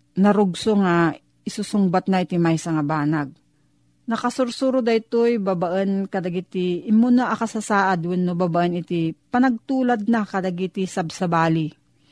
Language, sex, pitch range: Filipino, female, 180-225 Hz